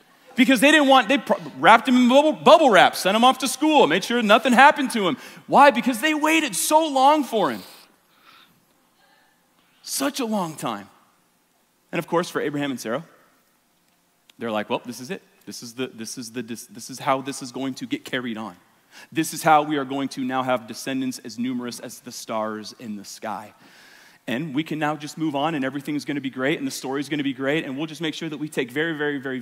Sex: male